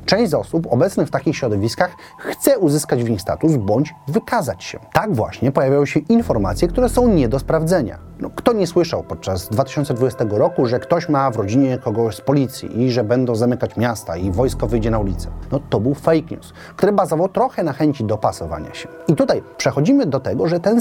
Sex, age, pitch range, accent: male, 30-49, 115-170 Hz, native